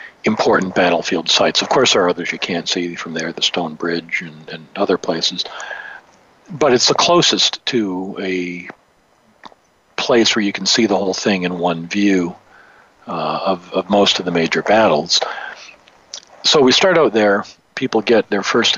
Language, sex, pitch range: English, male, 90-105 Hz